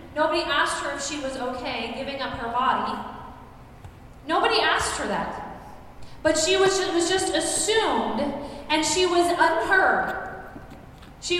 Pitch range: 295-370 Hz